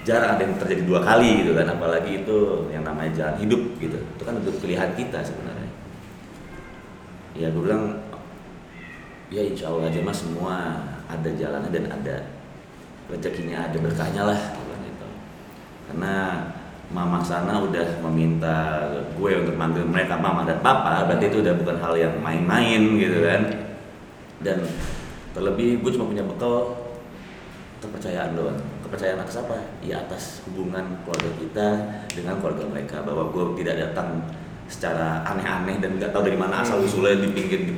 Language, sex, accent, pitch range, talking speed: Indonesian, male, native, 85-105 Hz, 150 wpm